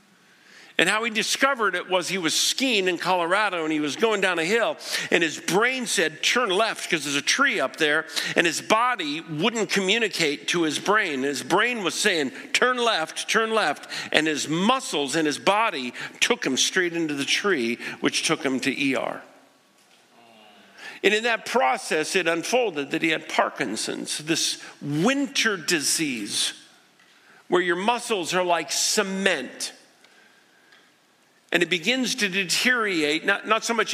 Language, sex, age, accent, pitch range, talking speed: English, male, 50-69, American, 165-235 Hz, 160 wpm